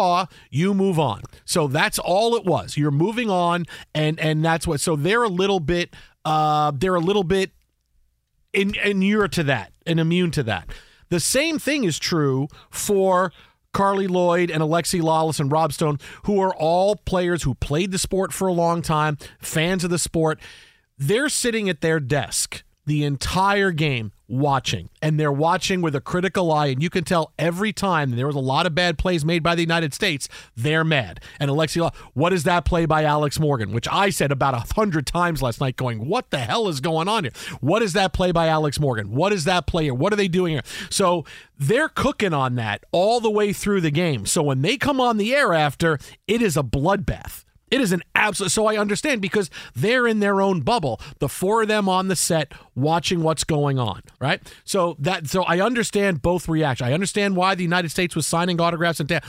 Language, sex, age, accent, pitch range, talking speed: English, male, 40-59, American, 145-190 Hz, 210 wpm